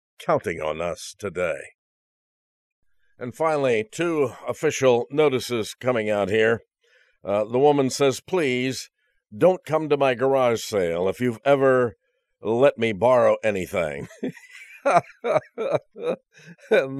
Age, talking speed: 50-69, 110 wpm